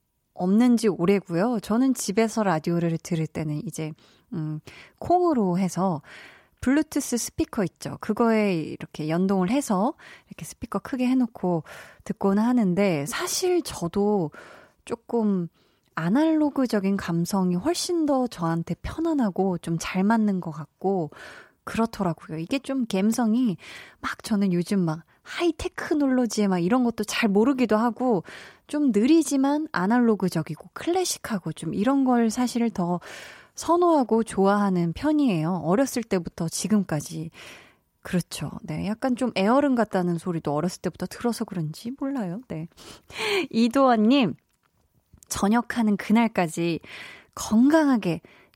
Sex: female